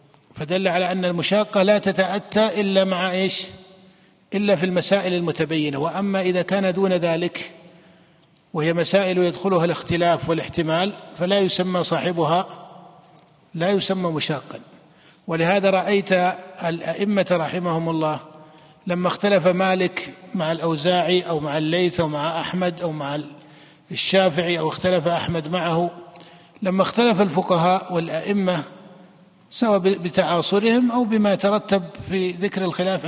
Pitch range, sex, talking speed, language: 165-195 Hz, male, 115 wpm, Arabic